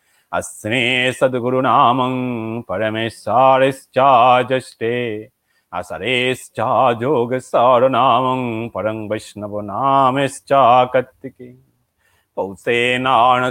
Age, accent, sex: 30-49, native, male